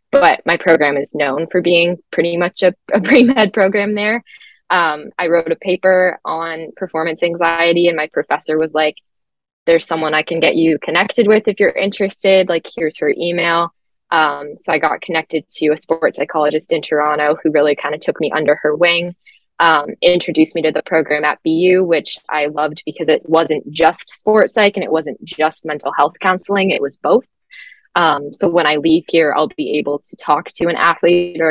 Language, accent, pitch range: English, American, 160-195 Hz